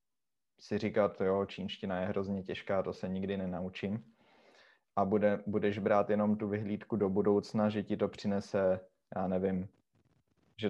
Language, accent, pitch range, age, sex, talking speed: Czech, native, 95-105 Hz, 20-39, male, 150 wpm